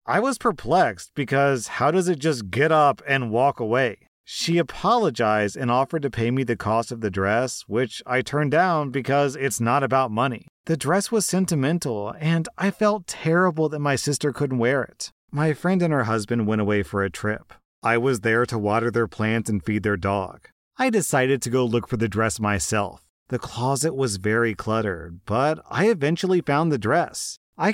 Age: 40-59